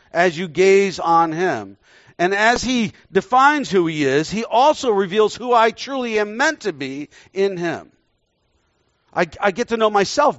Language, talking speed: English, 175 wpm